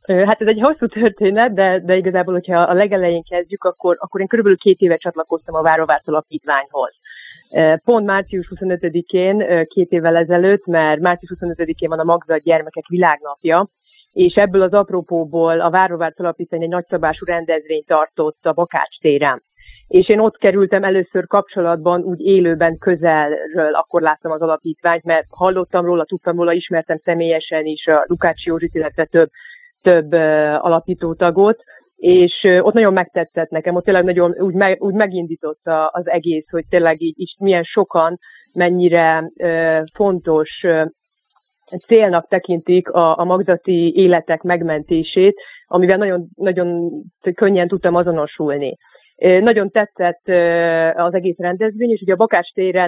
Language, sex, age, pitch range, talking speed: Hungarian, female, 30-49, 165-190 Hz, 140 wpm